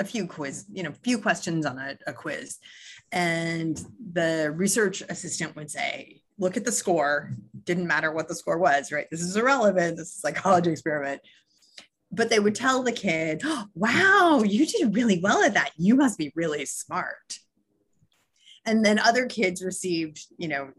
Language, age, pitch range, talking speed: English, 30-49, 165-225 Hz, 180 wpm